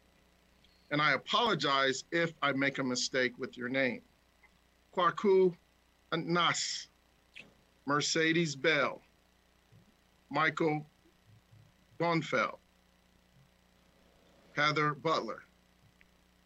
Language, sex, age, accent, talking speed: English, male, 40-59, American, 70 wpm